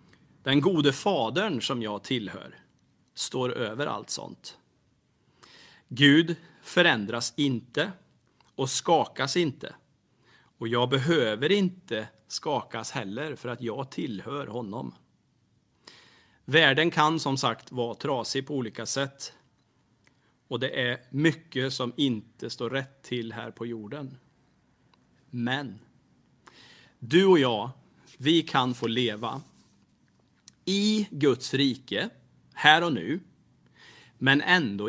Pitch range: 120-150 Hz